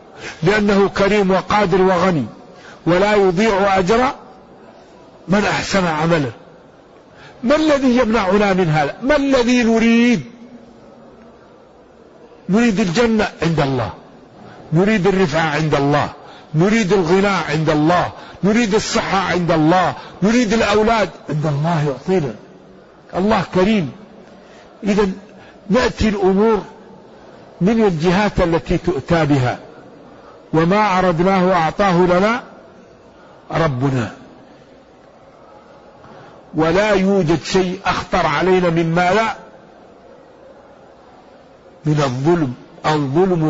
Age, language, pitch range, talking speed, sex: 50-69, Arabic, 160-210 Hz, 90 wpm, male